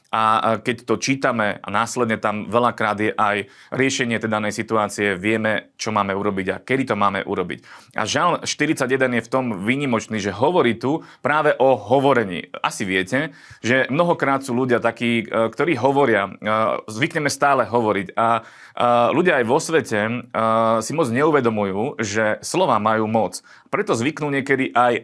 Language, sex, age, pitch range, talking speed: Slovak, male, 30-49, 110-130 Hz, 155 wpm